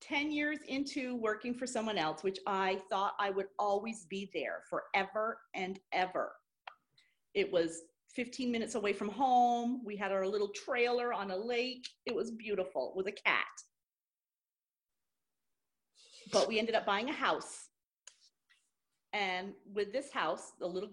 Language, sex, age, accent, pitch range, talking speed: English, female, 40-59, American, 185-240 Hz, 150 wpm